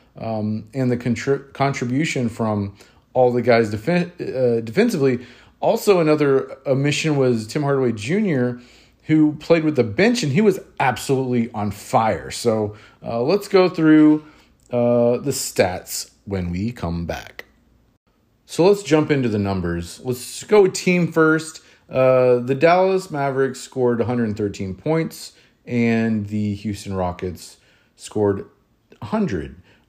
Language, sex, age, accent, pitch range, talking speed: English, male, 30-49, American, 105-140 Hz, 125 wpm